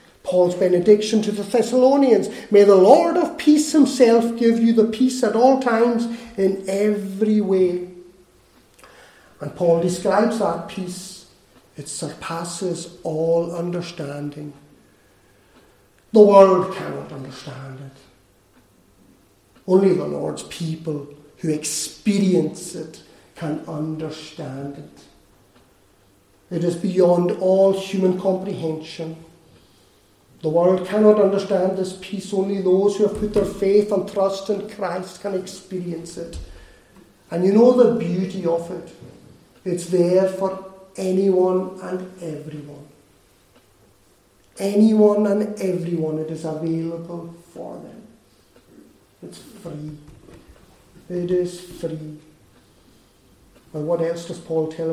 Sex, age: male, 50-69